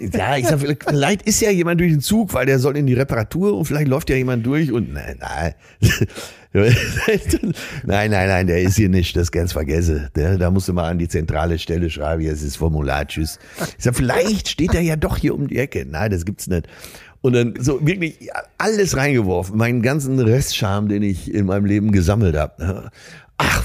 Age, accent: 60-79, German